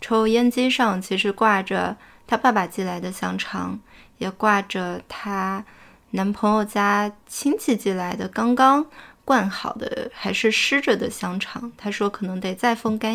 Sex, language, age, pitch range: female, Chinese, 20-39, 195-230 Hz